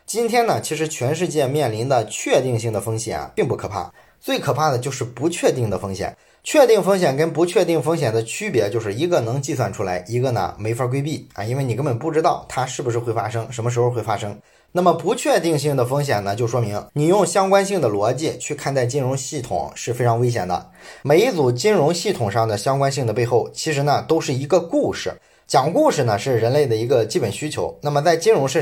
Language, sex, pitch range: Chinese, male, 115-155 Hz